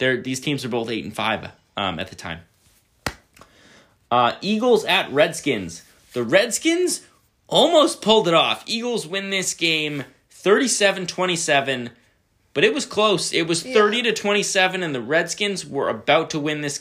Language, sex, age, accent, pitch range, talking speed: English, male, 20-39, American, 115-170 Hz, 135 wpm